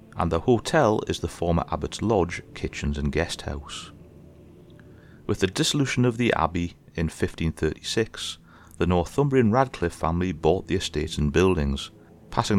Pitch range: 75-95 Hz